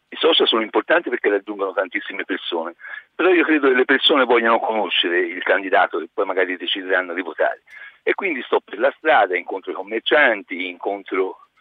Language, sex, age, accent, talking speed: Italian, male, 60-79, native, 175 wpm